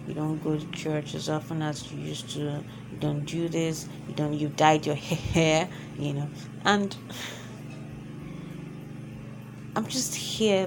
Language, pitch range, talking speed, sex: English, 140-175 Hz, 150 wpm, female